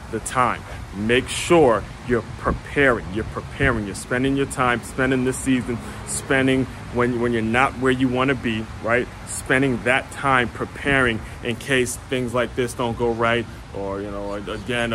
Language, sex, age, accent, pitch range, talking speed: English, male, 30-49, American, 115-130 Hz, 170 wpm